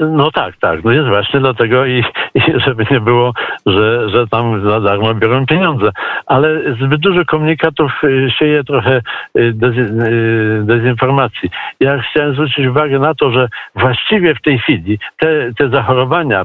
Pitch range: 115-145 Hz